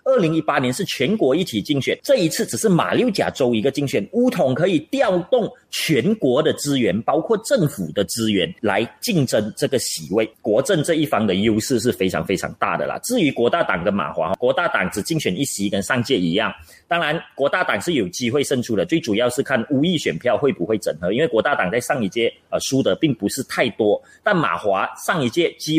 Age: 30-49